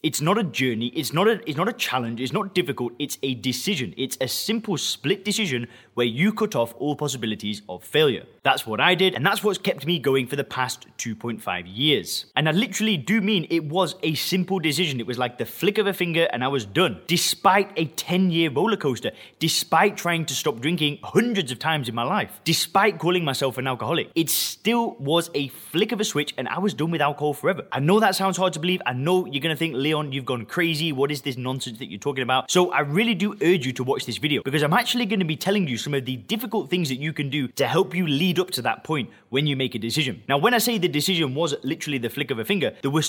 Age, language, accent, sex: 20-39, English, British, male